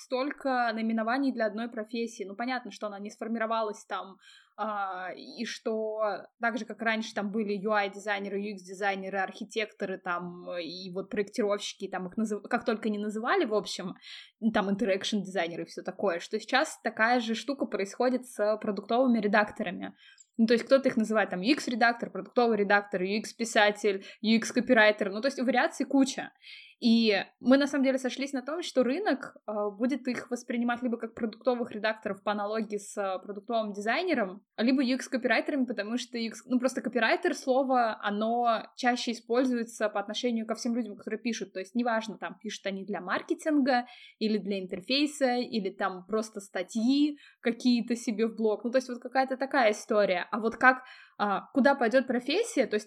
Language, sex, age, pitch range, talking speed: Russian, female, 20-39, 205-255 Hz, 160 wpm